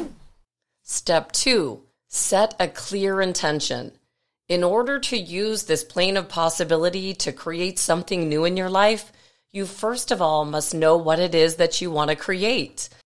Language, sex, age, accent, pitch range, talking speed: English, female, 40-59, American, 160-205 Hz, 160 wpm